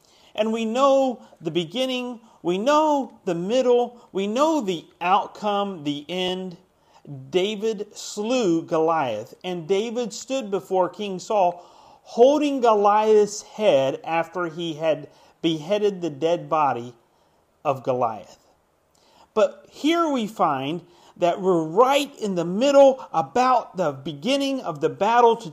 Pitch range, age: 170-230 Hz, 40-59